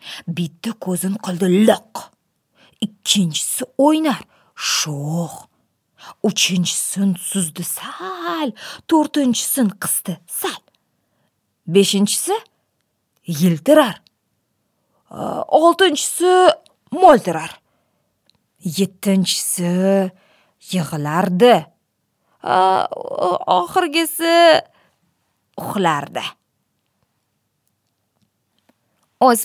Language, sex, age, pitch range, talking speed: English, female, 30-49, 190-305 Hz, 45 wpm